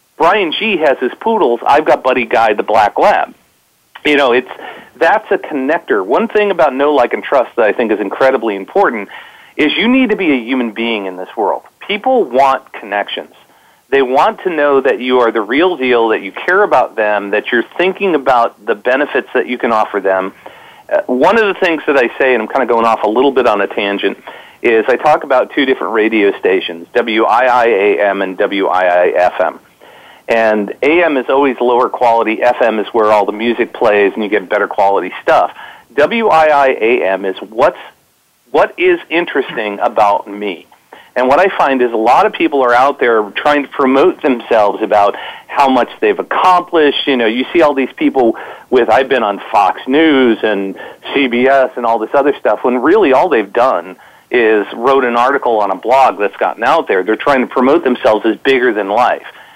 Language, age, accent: English, 40-59, American